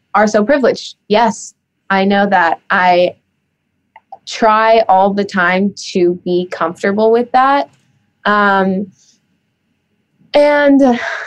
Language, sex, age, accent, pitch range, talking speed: English, female, 20-39, American, 180-210 Hz, 100 wpm